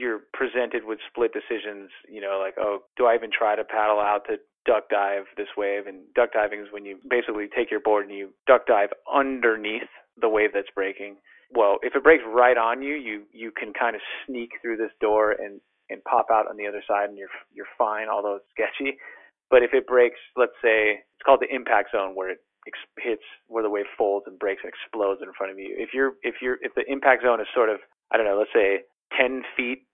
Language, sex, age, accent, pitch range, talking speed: English, male, 30-49, American, 100-125 Hz, 235 wpm